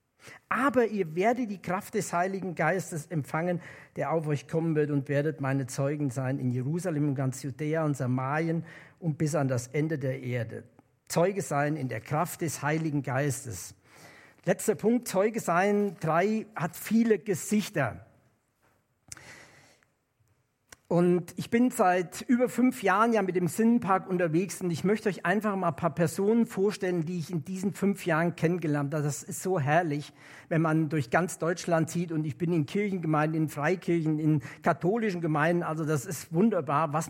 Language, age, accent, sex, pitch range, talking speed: German, 50-69, German, male, 145-200 Hz, 170 wpm